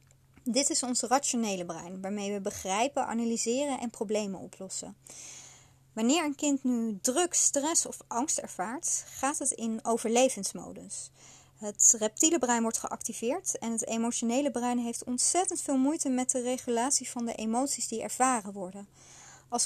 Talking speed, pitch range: 145 wpm, 230-285 Hz